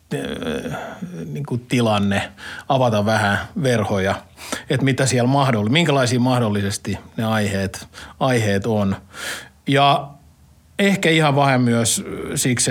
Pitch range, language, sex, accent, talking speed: 110-140 Hz, Finnish, male, native, 105 wpm